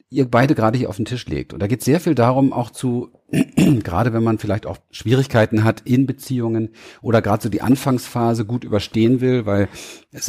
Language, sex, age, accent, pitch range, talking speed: German, male, 40-59, German, 110-130 Hz, 205 wpm